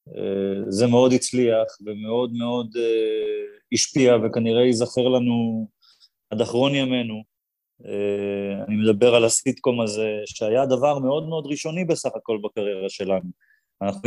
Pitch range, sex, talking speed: 110-135 Hz, male, 130 wpm